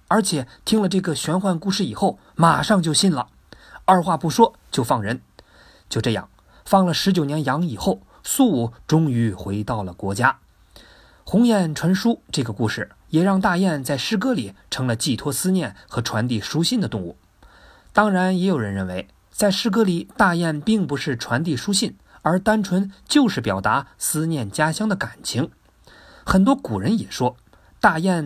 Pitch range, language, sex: 125-195 Hz, Chinese, male